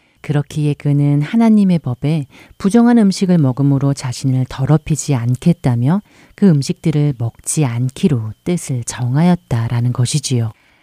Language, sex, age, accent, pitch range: Korean, female, 40-59, native, 125-170 Hz